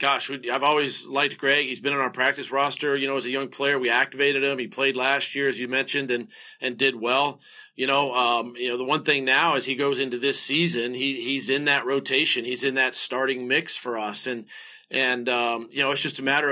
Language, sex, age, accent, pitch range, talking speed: English, male, 40-59, American, 125-145 Hz, 245 wpm